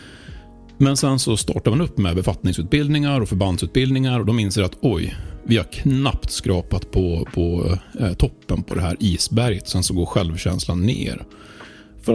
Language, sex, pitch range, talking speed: Swedish, male, 95-125 Hz, 160 wpm